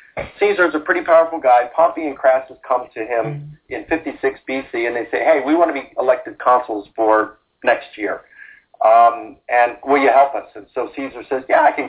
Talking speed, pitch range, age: 205 wpm, 115-145 Hz, 50-69